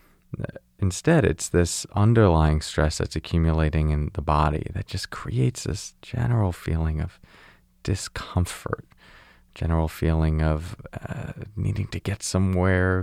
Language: English